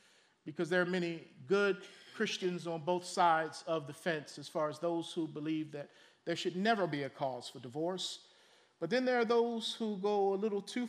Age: 40-59